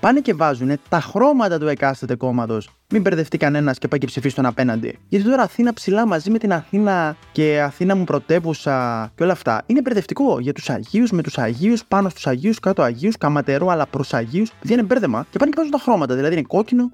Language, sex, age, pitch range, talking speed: Greek, male, 20-39, 125-170 Hz, 210 wpm